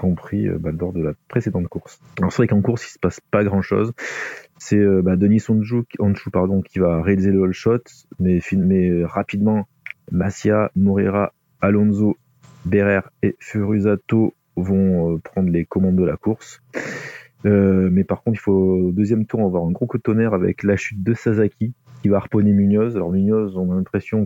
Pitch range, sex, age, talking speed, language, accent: 95-110 Hz, male, 30-49, 190 wpm, French, French